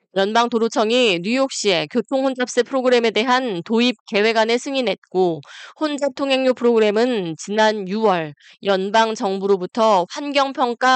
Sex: female